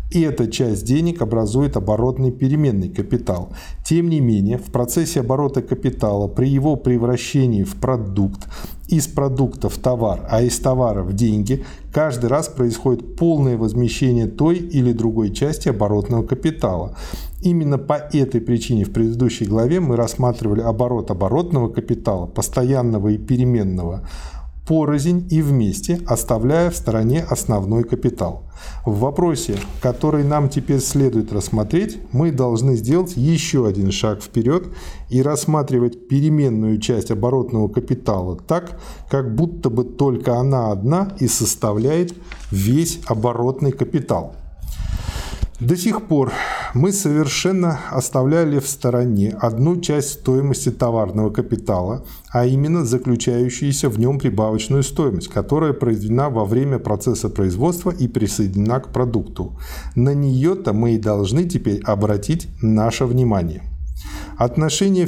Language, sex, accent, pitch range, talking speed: Russian, male, native, 110-145 Hz, 125 wpm